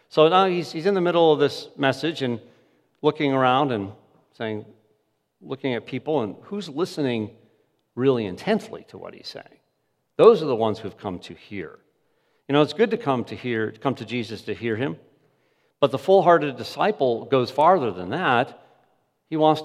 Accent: American